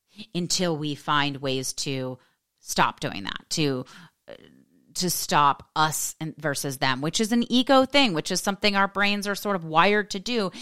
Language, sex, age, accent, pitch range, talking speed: English, female, 30-49, American, 145-180 Hz, 170 wpm